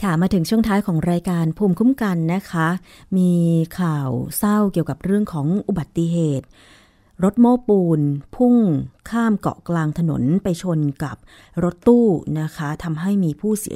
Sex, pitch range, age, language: female, 155-195 Hz, 20-39, Thai